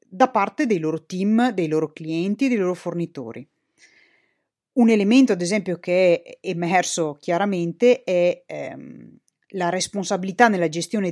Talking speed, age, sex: 135 wpm, 30-49, female